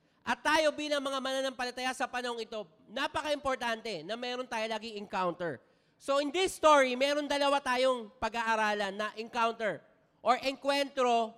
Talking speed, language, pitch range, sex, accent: 135 wpm, English, 215-280 Hz, male, Filipino